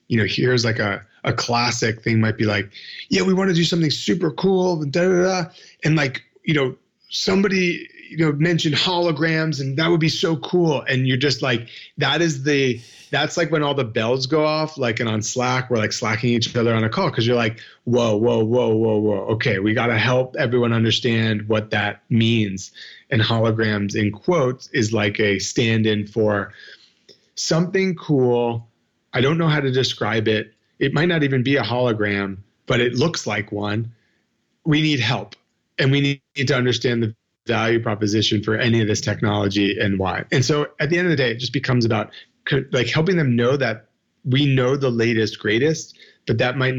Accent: American